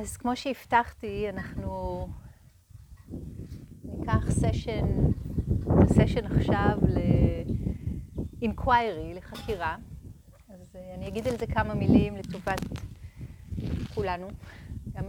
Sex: female